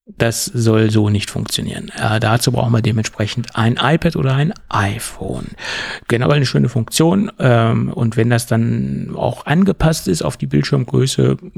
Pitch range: 115-145 Hz